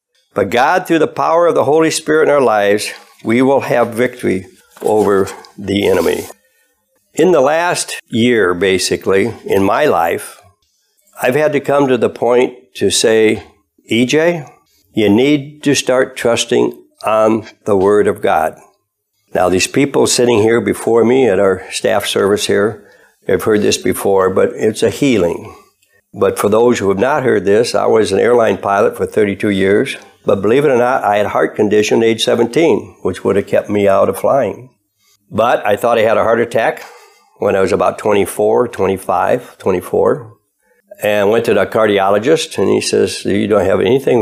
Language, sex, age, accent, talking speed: English, male, 60-79, American, 180 wpm